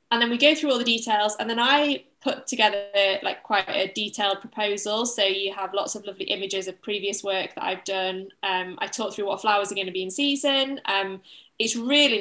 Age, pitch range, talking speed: 20-39, 195-235 Hz, 225 wpm